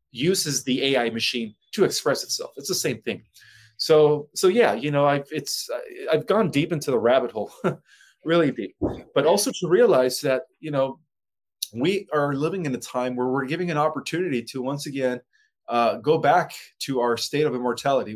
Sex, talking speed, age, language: male, 185 wpm, 30-49, English